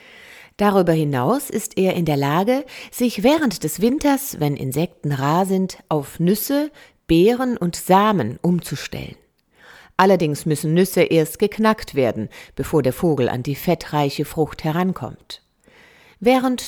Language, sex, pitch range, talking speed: German, female, 150-205 Hz, 130 wpm